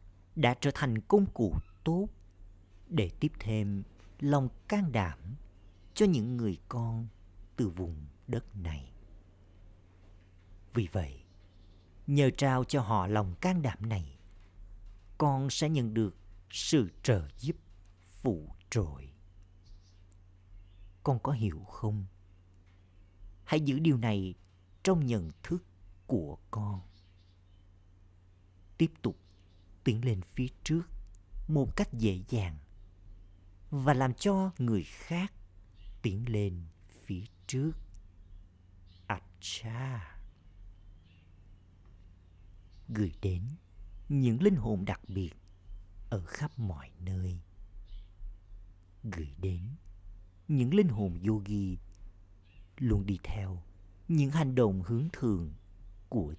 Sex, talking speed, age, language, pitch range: male, 105 wpm, 50-69, Vietnamese, 90-115 Hz